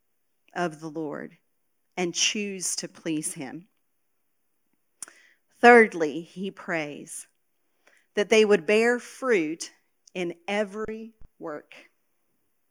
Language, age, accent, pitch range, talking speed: English, 40-59, American, 195-245 Hz, 90 wpm